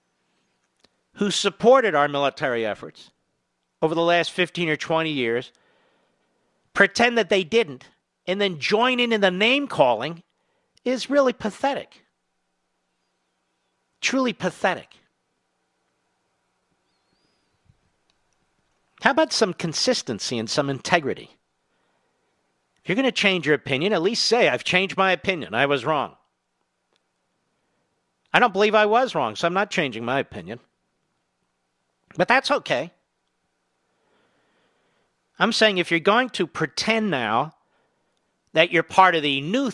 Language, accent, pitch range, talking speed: English, American, 160-220 Hz, 120 wpm